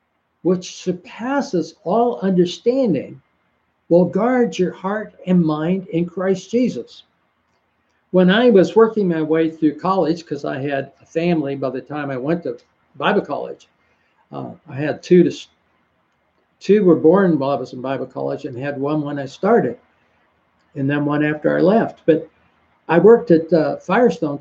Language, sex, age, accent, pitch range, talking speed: English, male, 60-79, American, 140-210 Hz, 160 wpm